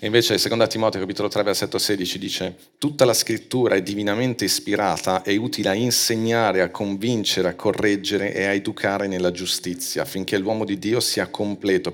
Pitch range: 95-115 Hz